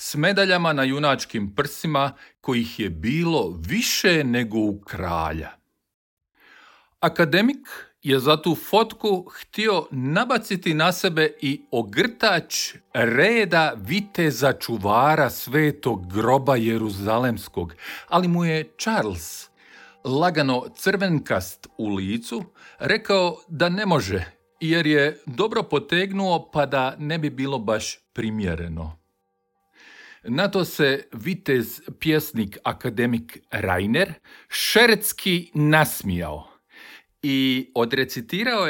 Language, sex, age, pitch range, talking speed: Croatian, male, 50-69, 115-175 Hz, 95 wpm